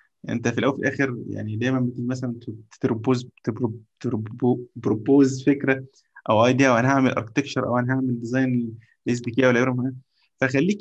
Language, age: Arabic, 20-39